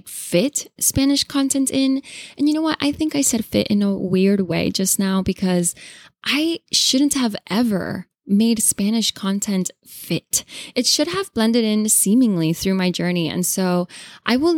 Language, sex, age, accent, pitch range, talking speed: English, female, 10-29, American, 180-255 Hz, 170 wpm